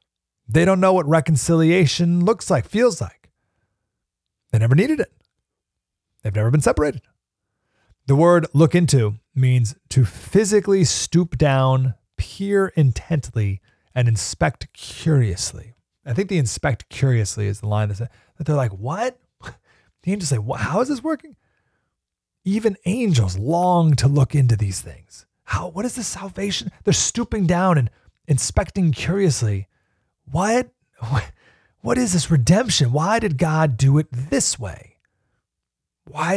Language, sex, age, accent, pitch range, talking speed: English, male, 30-49, American, 110-175 Hz, 135 wpm